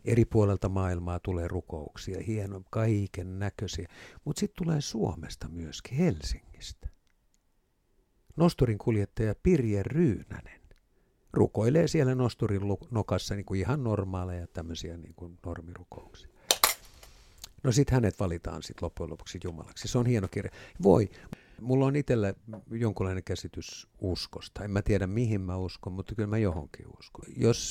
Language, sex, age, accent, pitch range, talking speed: Finnish, male, 60-79, native, 90-120 Hz, 125 wpm